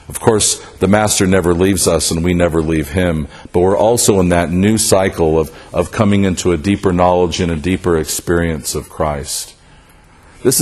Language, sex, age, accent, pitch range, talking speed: English, male, 50-69, American, 95-135 Hz, 185 wpm